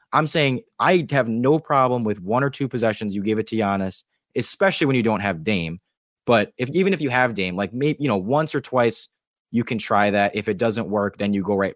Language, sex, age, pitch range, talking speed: English, male, 20-39, 100-130 Hz, 245 wpm